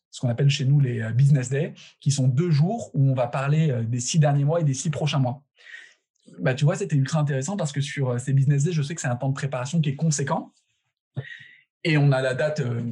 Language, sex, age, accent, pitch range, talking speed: French, male, 20-39, French, 130-155 Hz, 245 wpm